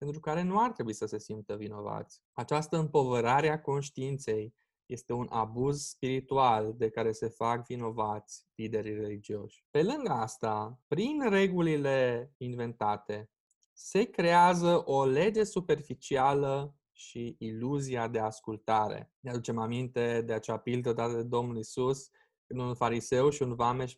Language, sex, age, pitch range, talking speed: Romanian, male, 20-39, 115-140 Hz, 140 wpm